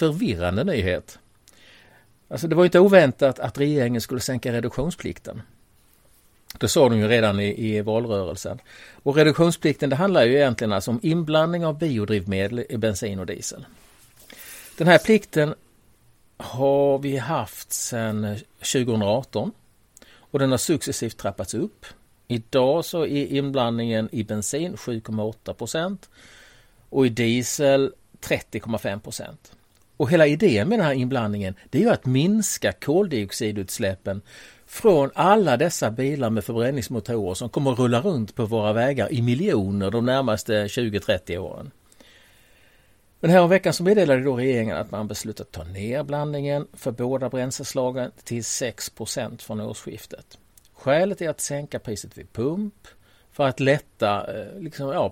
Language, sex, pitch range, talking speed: Swedish, male, 105-140 Hz, 140 wpm